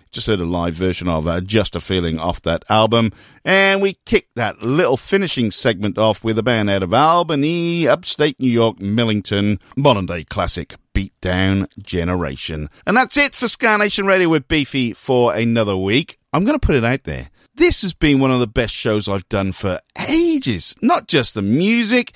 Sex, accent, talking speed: male, British, 190 wpm